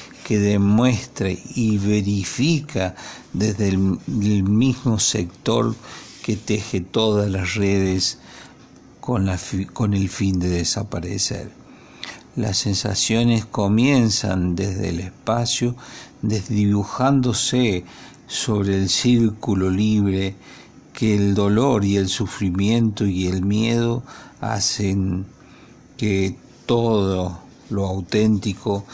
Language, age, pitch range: Spanish, 50-69, 95-110 Hz